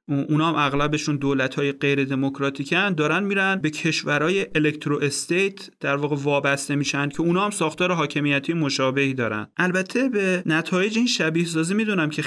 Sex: male